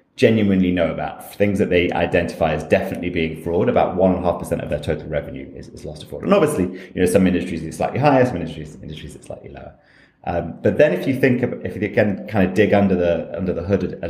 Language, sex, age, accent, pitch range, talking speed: English, male, 30-49, British, 80-100 Hz, 245 wpm